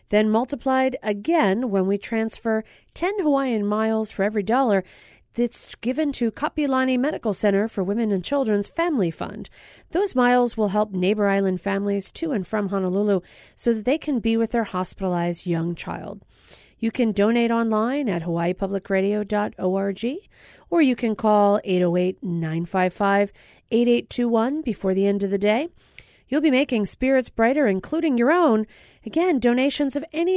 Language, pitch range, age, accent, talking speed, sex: English, 200-255 Hz, 40-59, American, 145 wpm, female